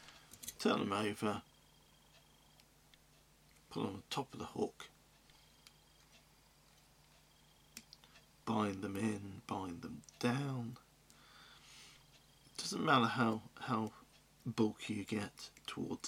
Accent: British